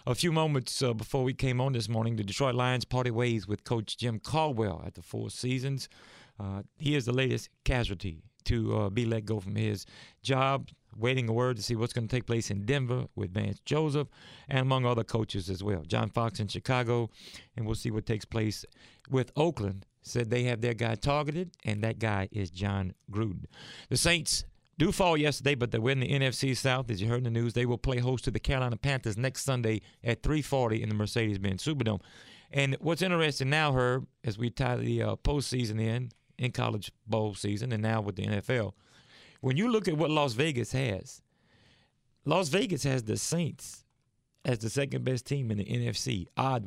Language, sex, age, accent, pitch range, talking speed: English, male, 40-59, American, 110-135 Hz, 205 wpm